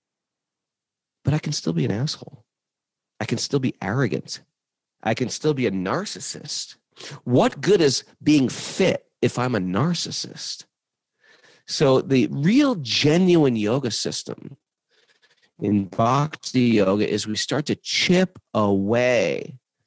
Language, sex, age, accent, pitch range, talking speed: English, male, 40-59, American, 125-185 Hz, 125 wpm